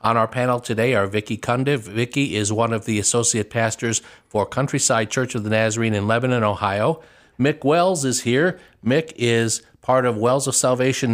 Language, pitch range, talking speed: English, 115-145 Hz, 185 wpm